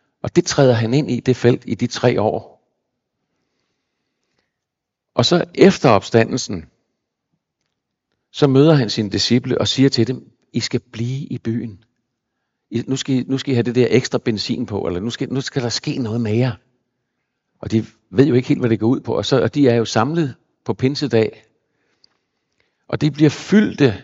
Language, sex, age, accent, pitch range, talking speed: Danish, male, 60-79, native, 115-135 Hz, 185 wpm